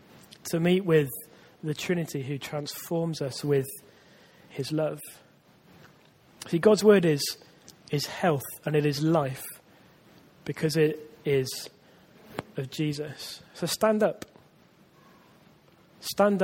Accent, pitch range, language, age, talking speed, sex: British, 145-170 Hz, English, 20-39, 115 wpm, male